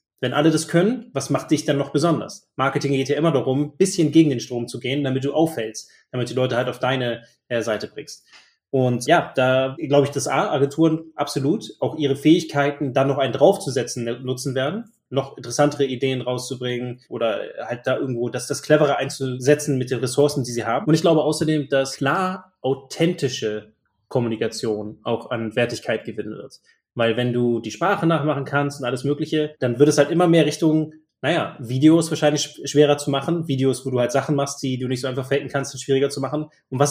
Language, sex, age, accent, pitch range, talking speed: German, male, 20-39, German, 125-150 Hz, 205 wpm